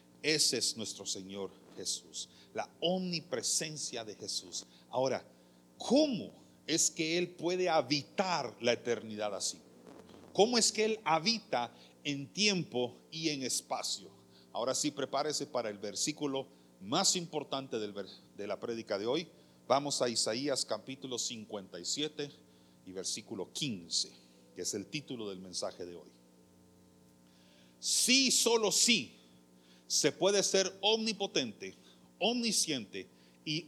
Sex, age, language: male, 40-59, Spanish